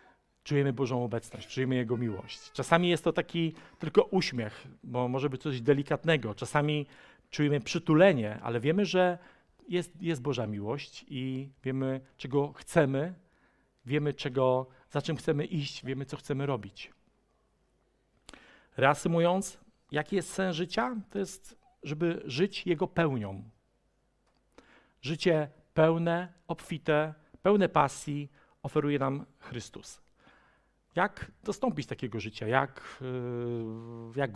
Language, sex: Polish, male